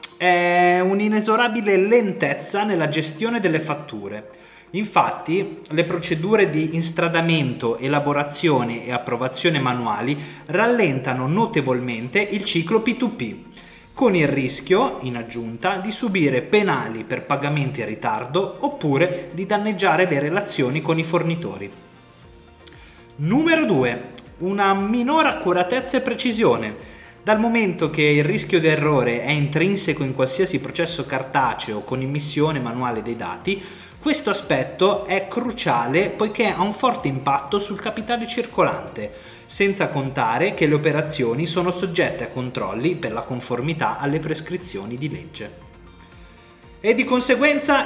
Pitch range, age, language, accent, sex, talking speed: 130-200 Hz, 30-49, Italian, native, male, 120 wpm